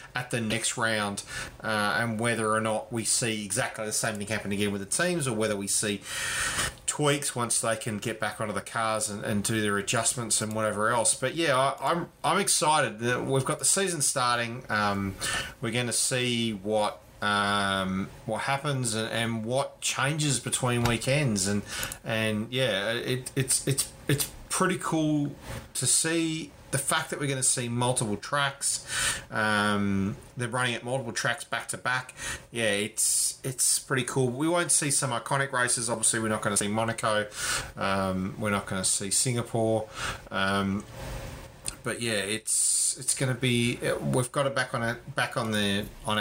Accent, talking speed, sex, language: Australian, 185 wpm, male, English